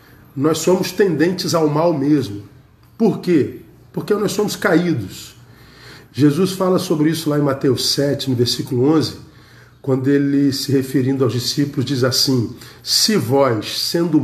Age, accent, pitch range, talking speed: 50-69, Brazilian, 135-185 Hz, 145 wpm